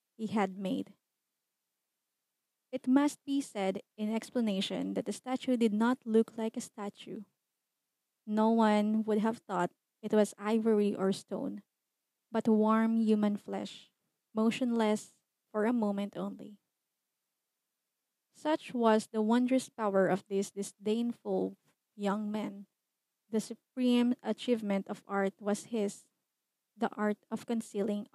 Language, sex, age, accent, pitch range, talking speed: English, female, 20-39, Filipino, 210-235 Hz, 125 wpm